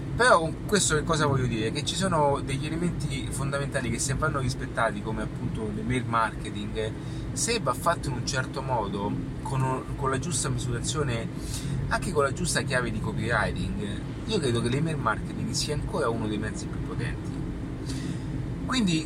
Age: 30-49